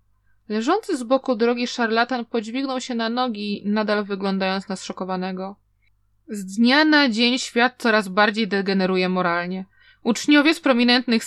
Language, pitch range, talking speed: Polish, 195-260 Hz, 135 wpm